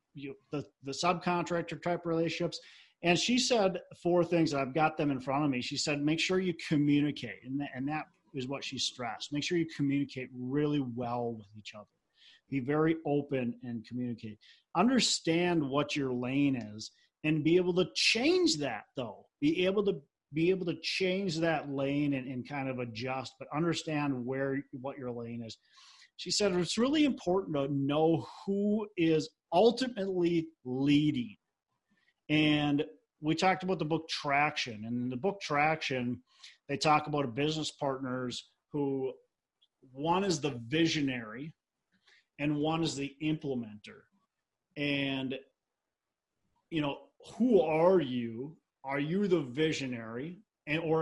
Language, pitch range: English, 135-170 Hz